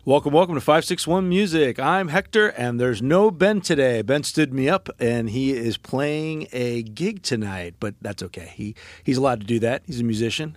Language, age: English, 40-59